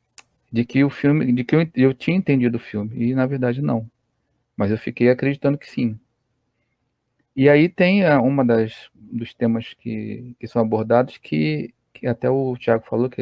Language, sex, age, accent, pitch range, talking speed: Portuguese, male, 40-59, Brazilian, 120-145 Hz, 175 wpm